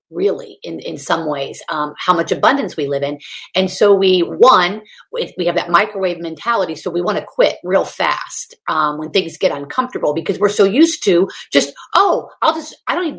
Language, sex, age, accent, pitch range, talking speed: English, female, 40-59, American, 210-305 Hz, 205 wpm